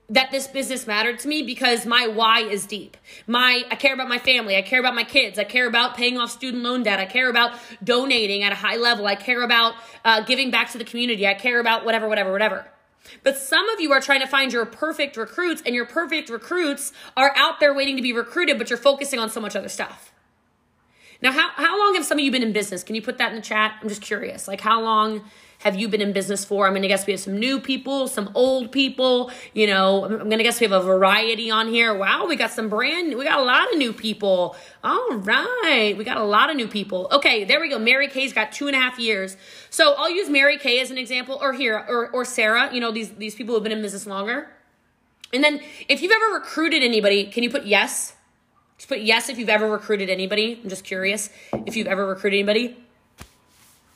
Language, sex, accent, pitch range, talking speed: English, female, American, 215-270 Hz, 245 wpm